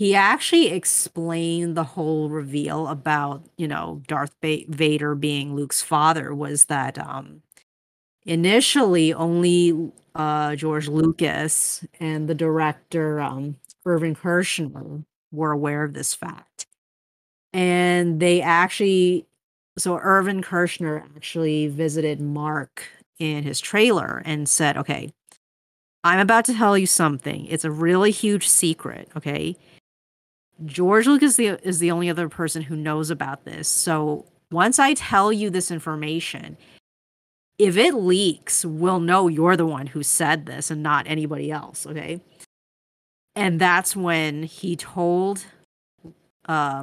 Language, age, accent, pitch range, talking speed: English, 40-59, American, 150-175 Hz, 130 wpm